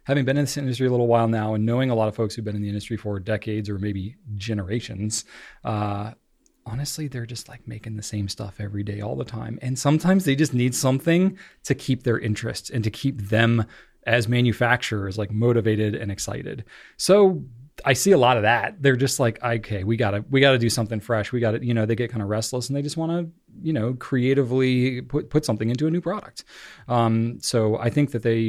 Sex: male